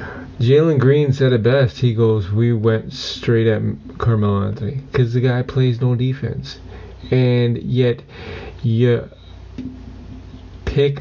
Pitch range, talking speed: 100-120 Hz, 125 wpm